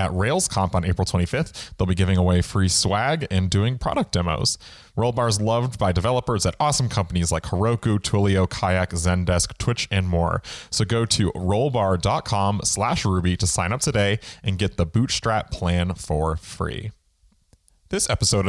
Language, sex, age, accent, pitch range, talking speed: English, male, 30-49, American, 95-125 Hz, 160 wpm